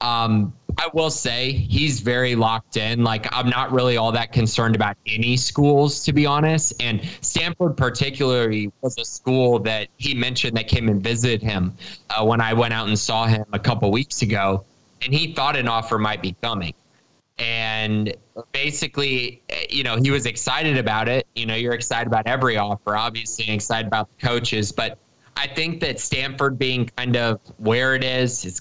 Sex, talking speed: male, 185 wpm